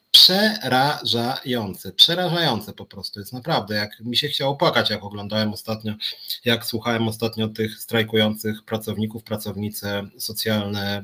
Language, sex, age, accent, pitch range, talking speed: Polish, male, 30-49, native, 105-125 Hz, 120 wpm